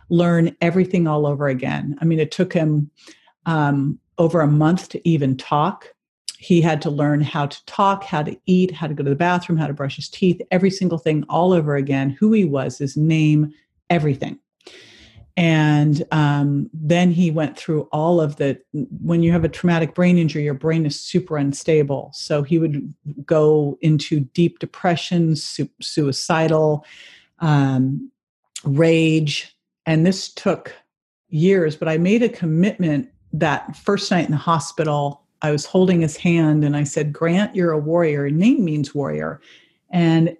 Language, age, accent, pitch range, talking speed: English, 50-69, American, 145-175 Hz, 170 wpm